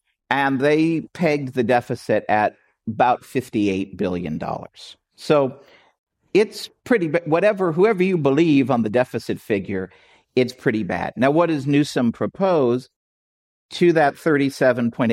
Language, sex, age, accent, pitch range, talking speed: English, male, 50-69, American, 110-140 Hz, 130 wpm